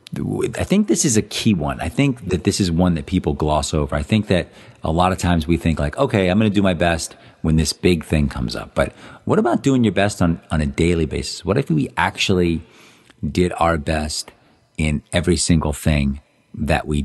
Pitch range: 75-100 Hz